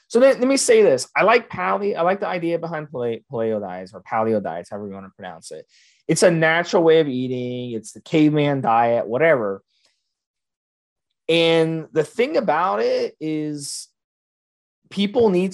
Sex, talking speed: male, 170 wpm